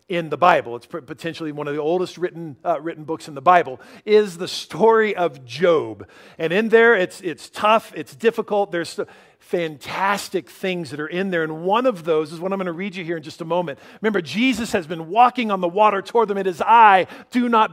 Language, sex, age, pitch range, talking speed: English, male, 50-69, 165-210 Hz, 225 wpm